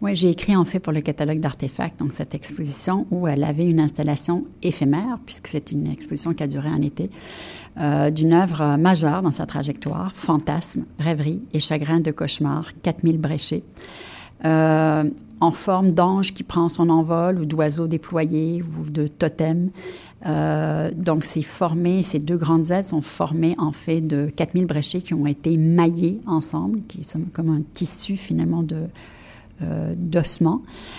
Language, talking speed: French, 165 wpm